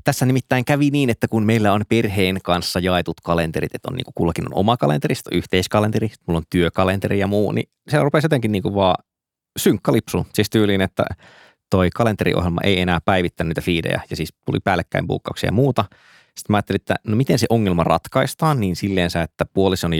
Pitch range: 90-115 Hz